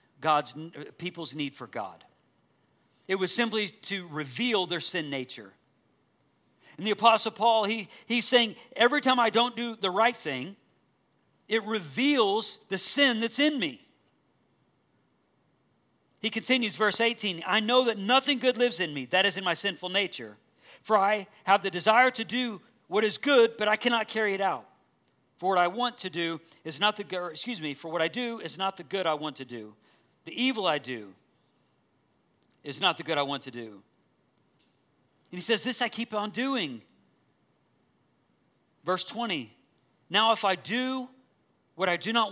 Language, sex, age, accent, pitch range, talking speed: English, male, 50-69, American, 165-230 Hz, 175 wpm